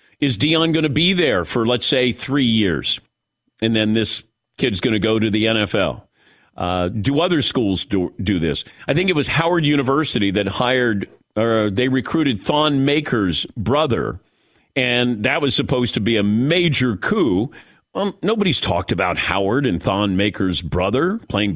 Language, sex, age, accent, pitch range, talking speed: English, male, 40-59, American, 110-150 Hz, 170 wpm